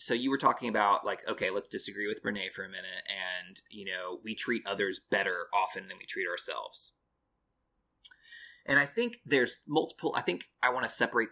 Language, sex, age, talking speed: English, male, 20-39, 195 wpm